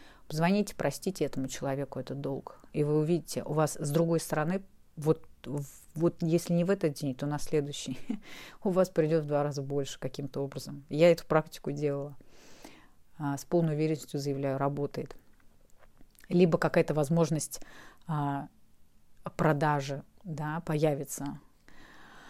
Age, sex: 30-49, female